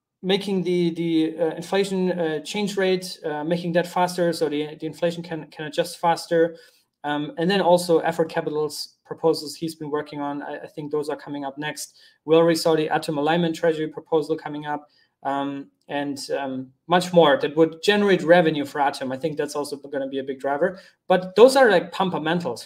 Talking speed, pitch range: 200 wpm, 150-180 Hz